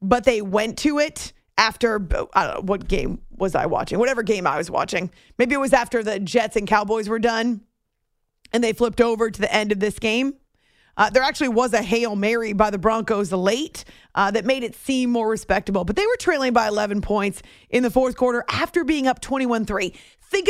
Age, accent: 30-49, American